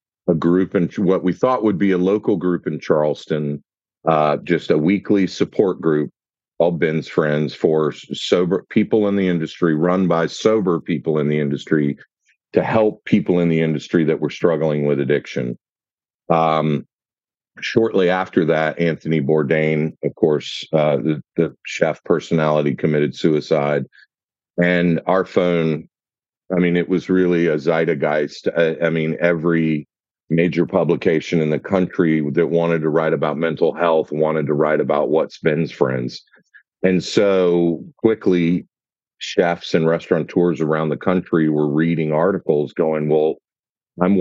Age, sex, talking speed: 50-69, male, 150 wpm